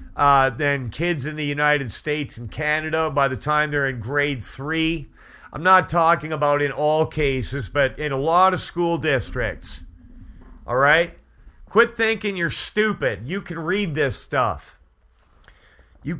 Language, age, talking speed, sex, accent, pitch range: English, 40-59, 155 wpm, male, American, 115-170 Hz